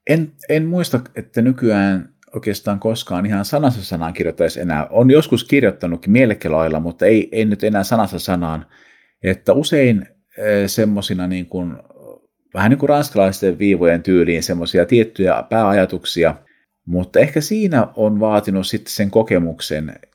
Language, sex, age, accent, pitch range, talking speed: Finnish, male, 50-69, native, 90-115 Hz, 135 wpm